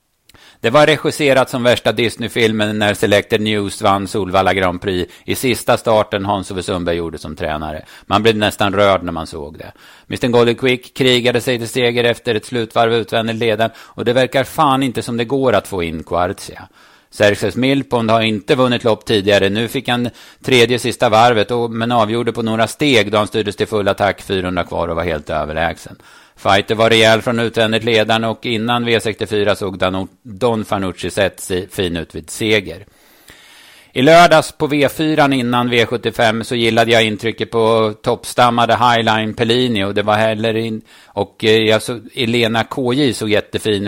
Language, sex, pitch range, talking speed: Swedish, male, 105-120 Hz, 170 wpm